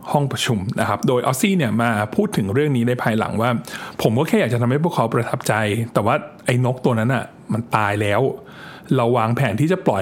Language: Thai